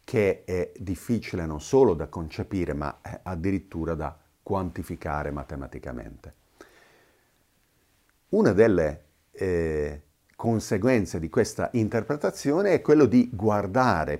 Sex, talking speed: male, 95 wpm